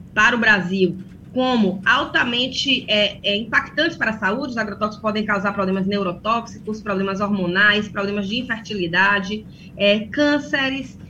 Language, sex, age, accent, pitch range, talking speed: Portuguese, female, 20-39, Brazilian, 205-285 Hz, 115 wpm